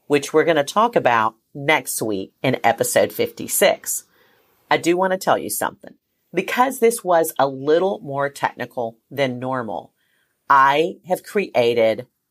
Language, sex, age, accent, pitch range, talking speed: English, female, 40-59, American, 125-175 Hz, 145 wpm